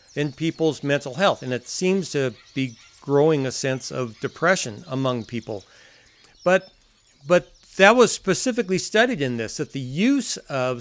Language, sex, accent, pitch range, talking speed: English, male, American, 125-170 Hz, 155 wpm